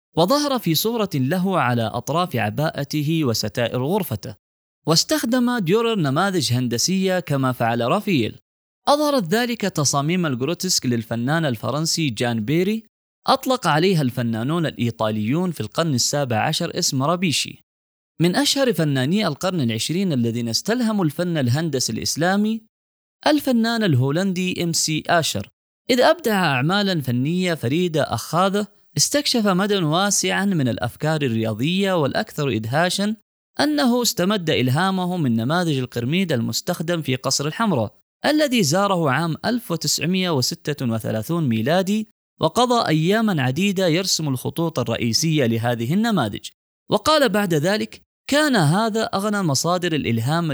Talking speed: 110 wpm